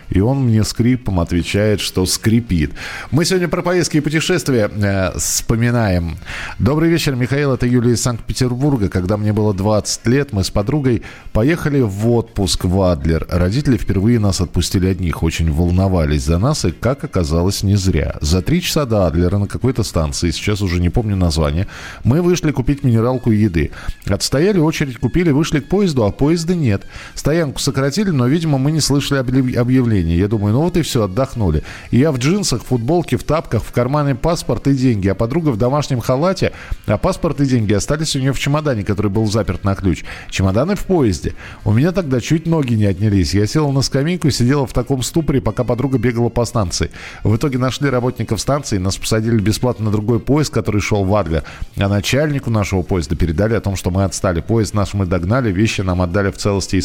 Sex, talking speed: male, 195 wpm